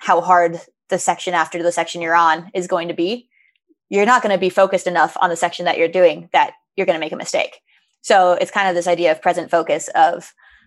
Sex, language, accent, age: female, English, American, 20-39